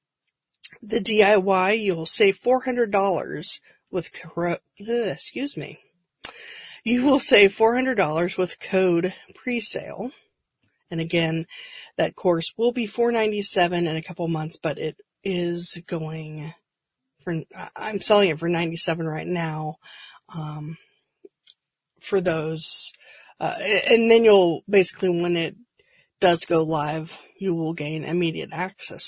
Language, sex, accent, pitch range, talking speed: English, female, American, 165-205 Hz, 115 wpm